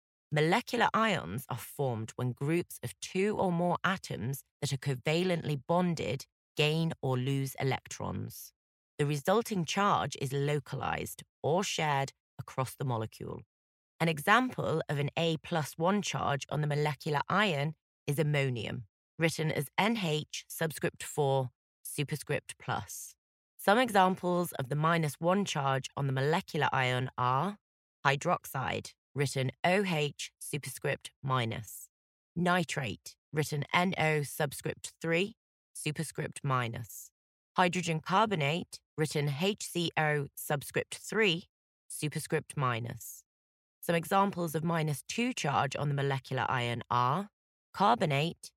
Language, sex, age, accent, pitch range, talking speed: English, female, 30-49, British, 130-170 Hz, 115 wpm